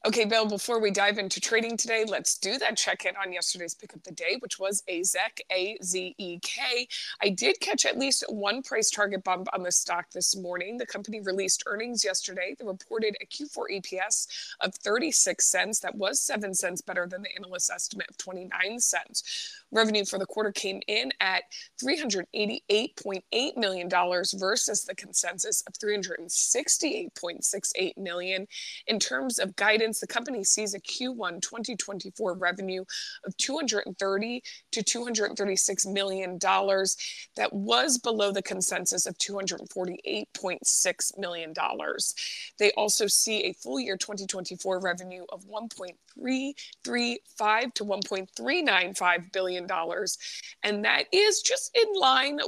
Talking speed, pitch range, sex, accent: 135 wpm, 185-235 Hz, female, American